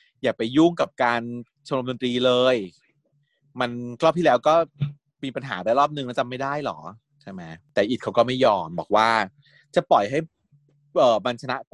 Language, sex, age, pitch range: Thai, male, 30-49, 115-160 Hz